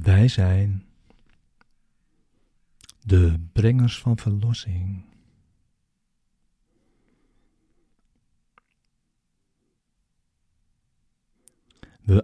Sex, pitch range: male, 95-115 Hz